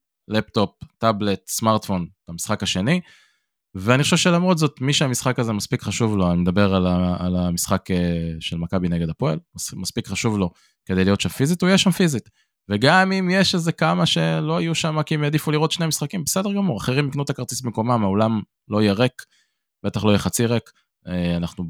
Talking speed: 185 wpm